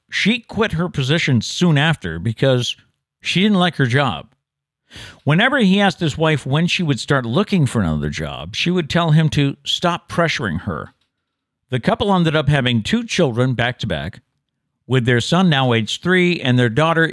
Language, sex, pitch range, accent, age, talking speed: English, male, 120-165 Hz, American, 50-69, 175 wpm